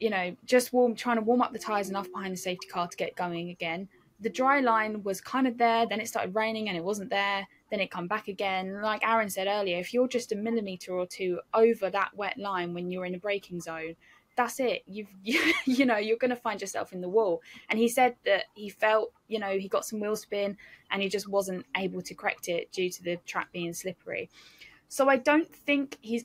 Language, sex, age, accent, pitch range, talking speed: English, female, 10-29, British, 180-220 Hz, 245 wpm